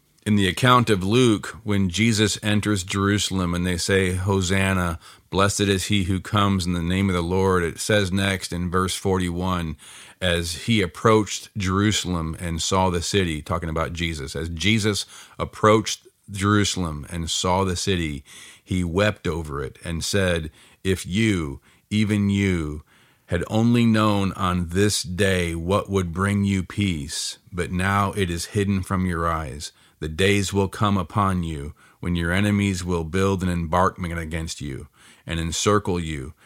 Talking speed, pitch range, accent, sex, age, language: 160 wpm, 85-100 Hz, American, male, 40-59, English